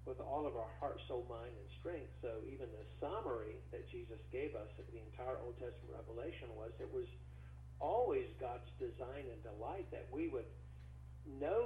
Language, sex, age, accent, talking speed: English, male, 50-69, American, 180 wpm